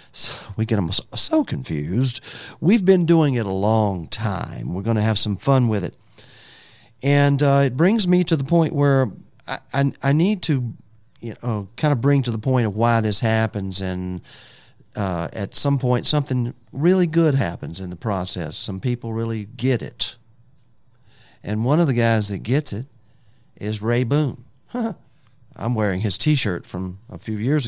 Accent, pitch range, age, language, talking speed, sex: American, 110-140 Hz, 50-69, English, 180 wpm, male